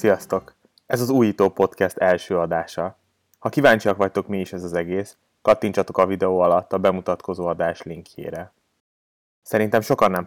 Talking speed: 150 wpm